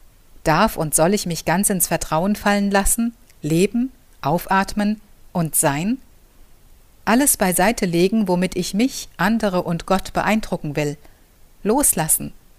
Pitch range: 155-215 Hz